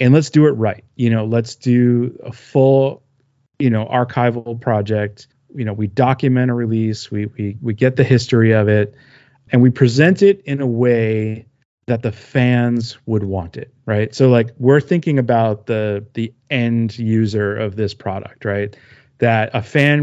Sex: male